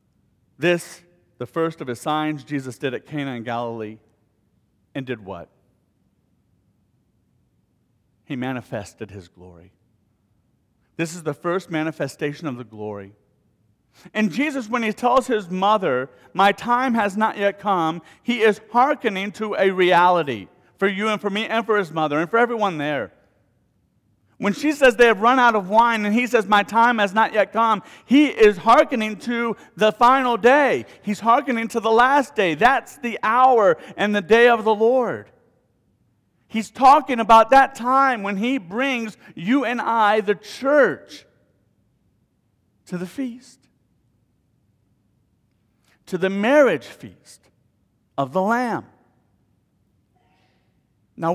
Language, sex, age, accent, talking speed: English, male, 40-59, American, 145 wpm